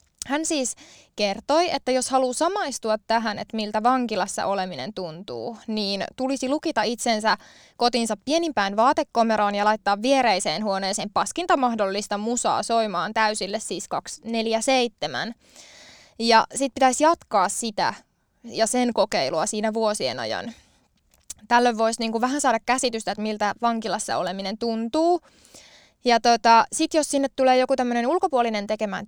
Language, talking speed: Finnish, 130 wpm